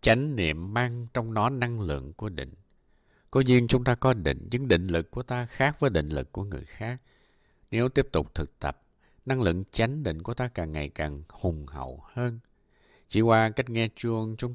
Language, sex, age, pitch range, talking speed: Vietnamese, male, 60-79, 85-125 Hz, 205 wpm